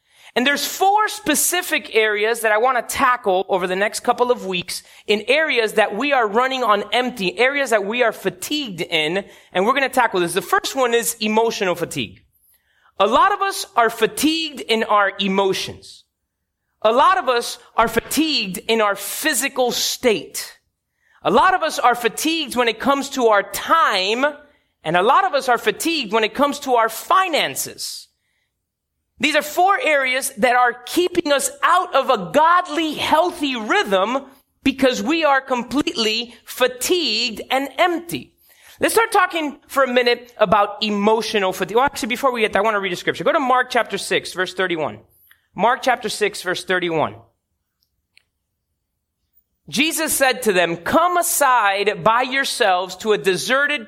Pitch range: 200-280 Hz